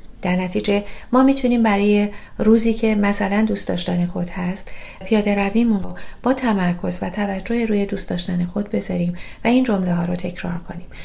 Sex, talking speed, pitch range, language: female, 170 wpm, 180-210 Hz, Persian